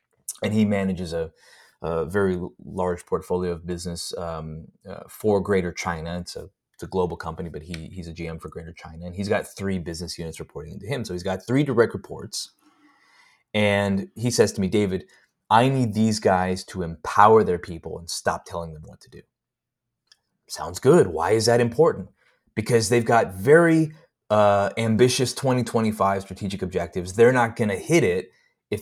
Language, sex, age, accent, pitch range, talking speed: English, male, 20-39, American, 90-135 Hz, 175 wpm